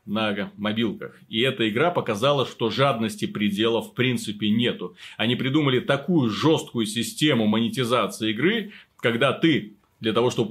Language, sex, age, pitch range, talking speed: Russian, male, 30-49, 115-165 Hz, 135 wpm